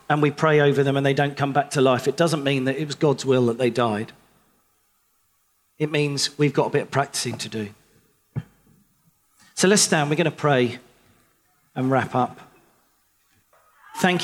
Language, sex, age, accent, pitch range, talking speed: English, male, 40-59, British, 135-160 Hz, 185 wpm